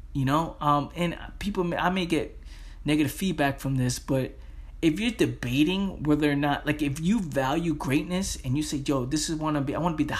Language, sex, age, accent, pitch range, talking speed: English, male, 20-39, American, 130-155 Hz, 230 wpm